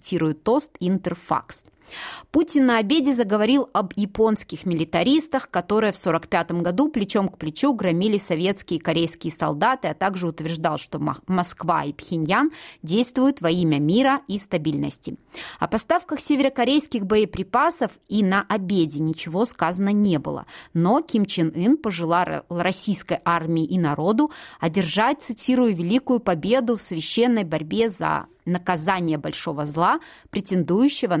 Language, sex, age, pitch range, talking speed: Russian, female, 30-49, 165-235 Hz, 130 wpm